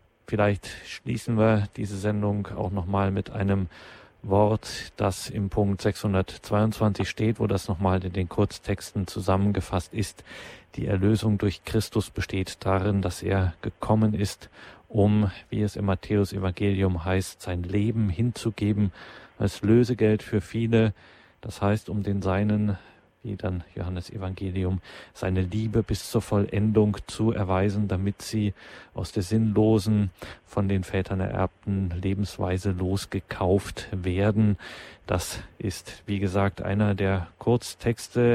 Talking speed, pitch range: 125 wpm, 95-115 Hz